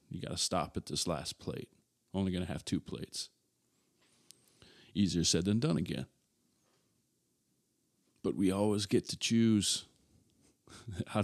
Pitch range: 90-105 Hz